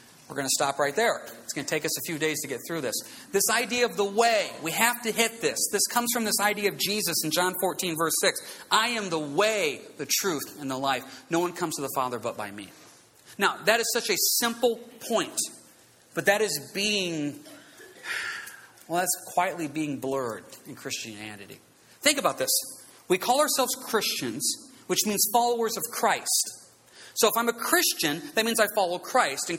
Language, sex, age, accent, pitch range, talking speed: English, male, 40-59, American, 165-235 Hz, 200 wpm